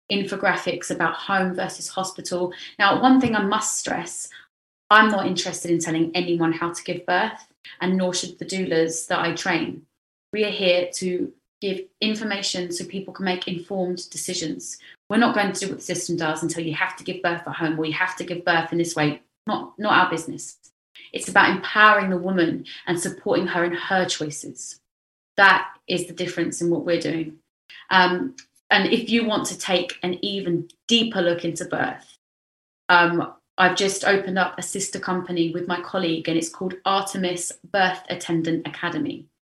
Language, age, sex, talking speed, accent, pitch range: English, 20-39, female, 185 wpm, British, 170-190 Hz